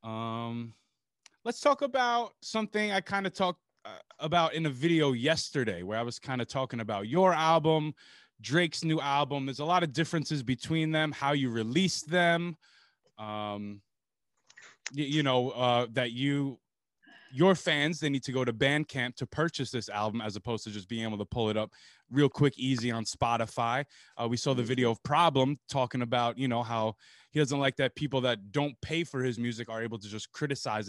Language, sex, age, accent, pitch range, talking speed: English, male, 20-39, American, 120-165 Hz, 190 wpm